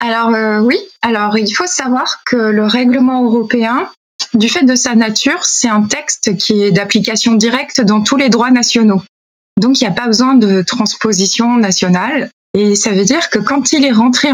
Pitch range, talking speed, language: 210-260 Hz, 195 wpm, French